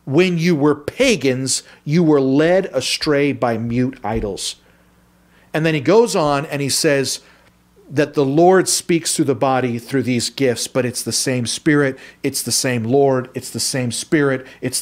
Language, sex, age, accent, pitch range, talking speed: English, male, 40-59, American, 130-180 Hz, 175 wpm